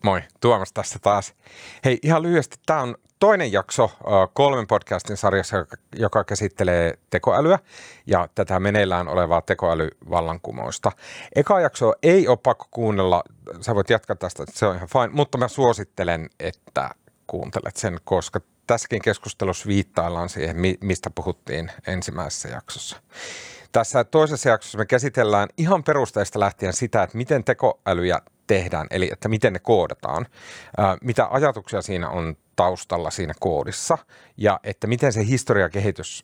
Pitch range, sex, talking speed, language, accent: 95-130 Hz, male, 140 wpm, Finnish, native